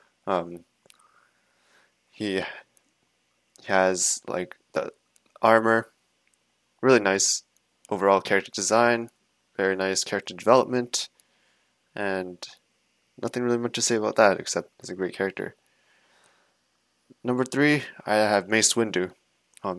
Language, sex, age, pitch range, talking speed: English, male, 20-39, 100-120 Hz, 105 wpm